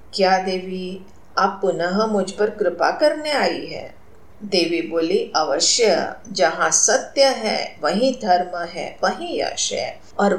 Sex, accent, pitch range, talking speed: female, native, 180-295 Hz, 135 wpm